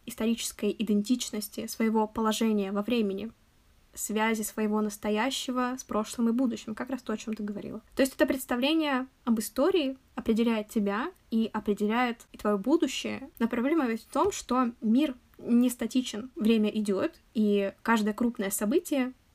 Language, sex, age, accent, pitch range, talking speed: Russian, female, 10-29, native, 210-255 Hz, 145 wpm